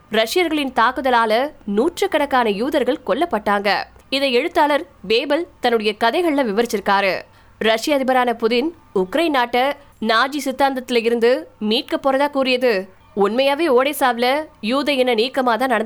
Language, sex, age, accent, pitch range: Tamil, female, 20-39, native, 225-280 Hz